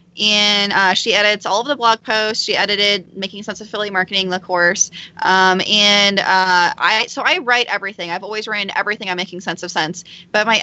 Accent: American